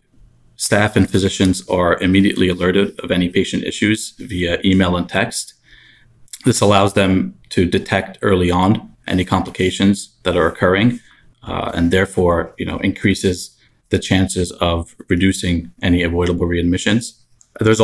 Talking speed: 135 wpm